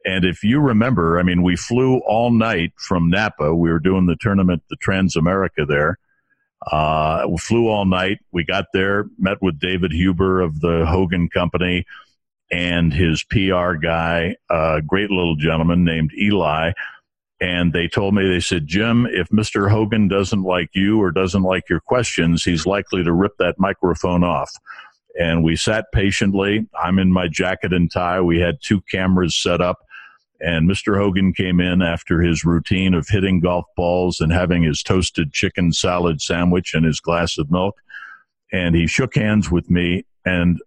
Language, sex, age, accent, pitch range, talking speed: English, male, 60-79, American, 85-100 Hz, 175 wpm